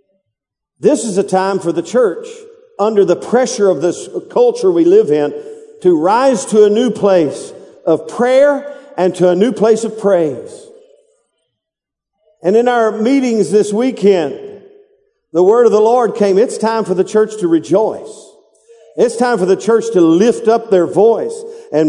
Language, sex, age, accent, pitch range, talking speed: English, male, 50-69, American, 200-270 Hz, 165 wpm